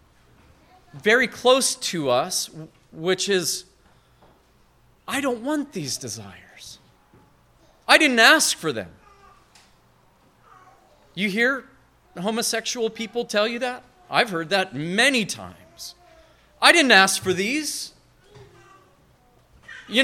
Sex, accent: male, American